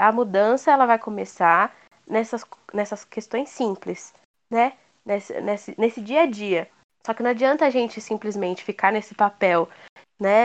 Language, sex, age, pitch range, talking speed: Portuguese, female, 10-29, 200-255 Hz, 145 wpm